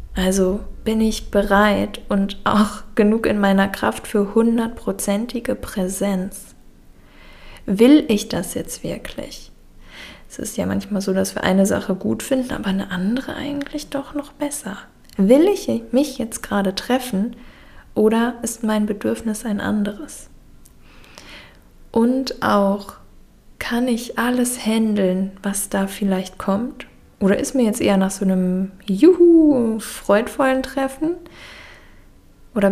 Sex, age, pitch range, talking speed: female, 10-29, 200-240 Hz, 125 wpm